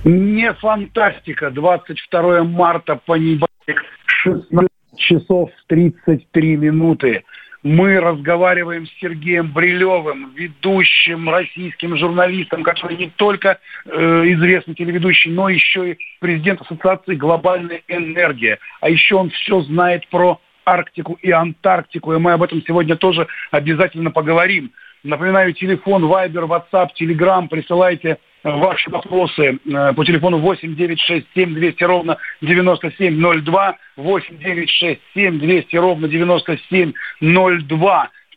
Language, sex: Russian, male